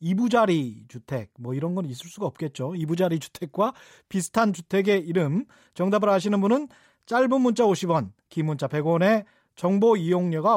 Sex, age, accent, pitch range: male, 30-49, native, 155-220 Hz